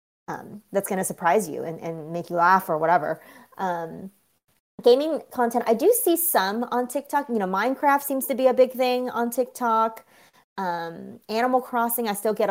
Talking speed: 185 wpm